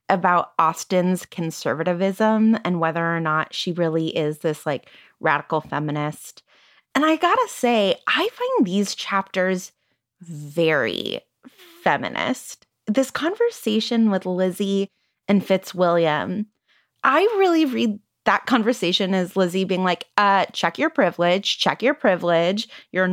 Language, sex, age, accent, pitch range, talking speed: English, female, 20-39, American, 180-255 Hz, 125 wpm